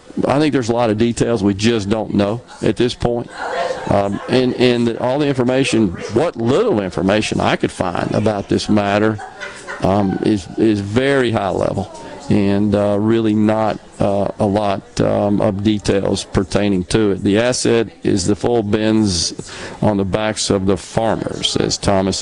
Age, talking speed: 50-69, 170 wpm